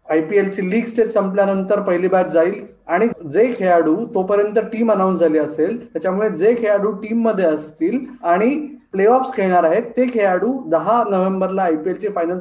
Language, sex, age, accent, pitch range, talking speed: Marathi, male, 20-39, native, 185-245 Hz, 155 wpm